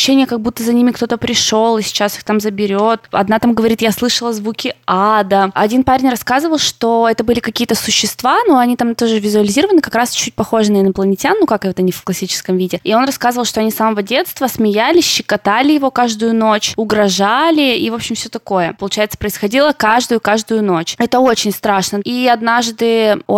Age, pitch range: 20-39, 200-245 Hz